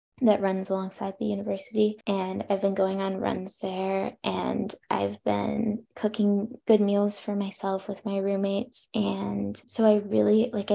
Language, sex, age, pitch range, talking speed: English, female, 10-29, 190-225 Hz, 155 wpm